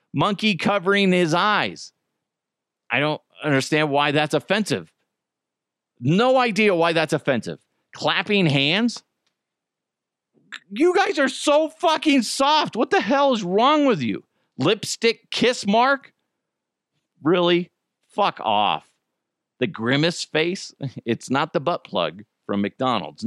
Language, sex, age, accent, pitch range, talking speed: English, male, 40-59, American, 125-200 Hz, 120 wpm